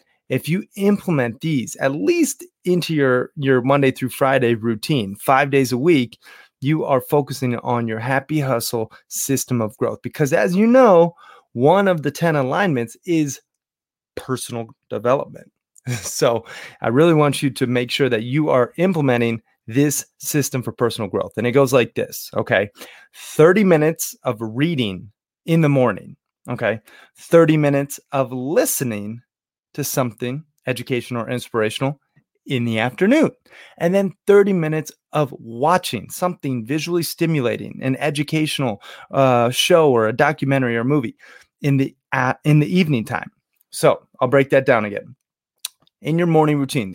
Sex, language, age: male, English, 30-49